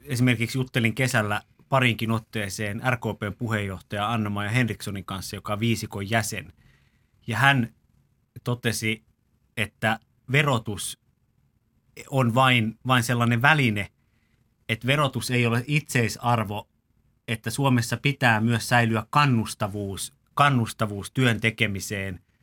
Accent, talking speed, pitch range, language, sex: native, 105 wpm, 110-125 Hz, Finnish, male